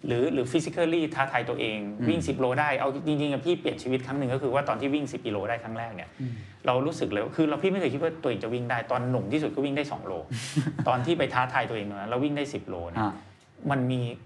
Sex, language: male, Thai